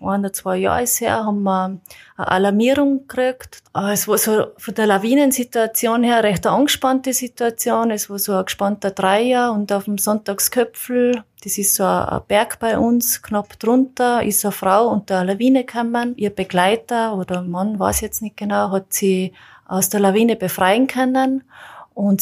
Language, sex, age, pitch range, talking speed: German, female, 30-49, 190-230 Hz, 175 wpm